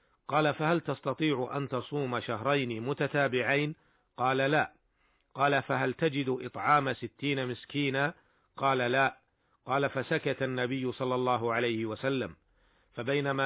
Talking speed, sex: 110 wpm, male